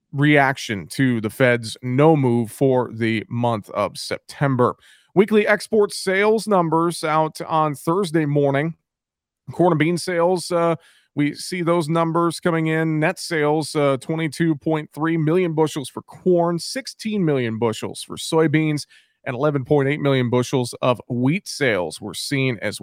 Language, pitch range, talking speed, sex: English, 130-160 Hz, 140 wpm, male